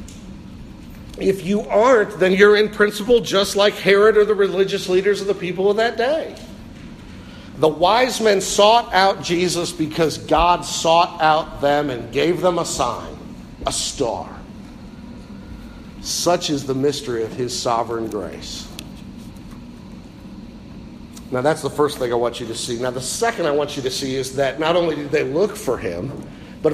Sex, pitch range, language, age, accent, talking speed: male, 150-205 Hz, English, 50-69, American, 165 wpm